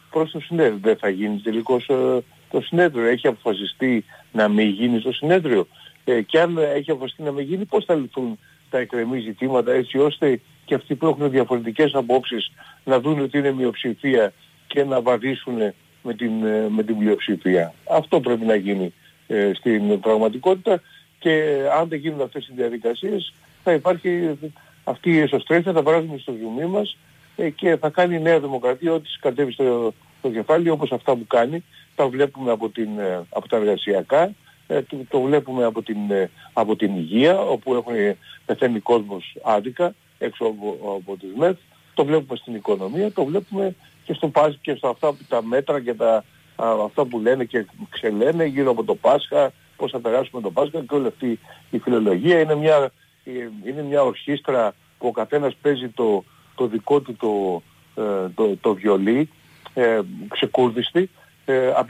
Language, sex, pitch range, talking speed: Greek, male, 115-155 Hz, 165 wpm